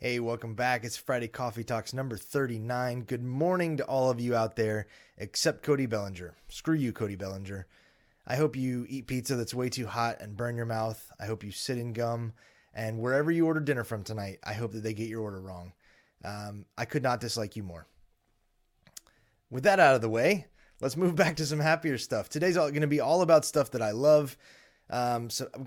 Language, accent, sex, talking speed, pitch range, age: English, American, male, 215 wpm, 110-145 Hz, 20-39